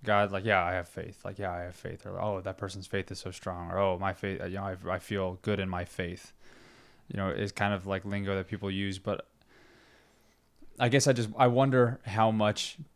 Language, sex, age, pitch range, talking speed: English, male, 20-39, 95-110 Hz, 235 wpm